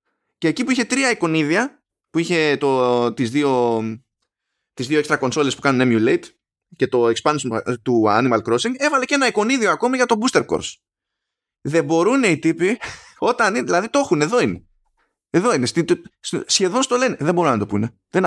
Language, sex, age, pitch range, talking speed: Greek, male, 20-39, 115-190 Hz, 175 wpm